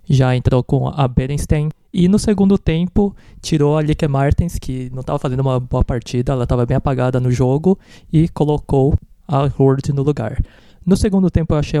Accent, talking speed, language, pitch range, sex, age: Brazilian, 190 wpm, Portuguese, 135-160 Hz, male, 20-39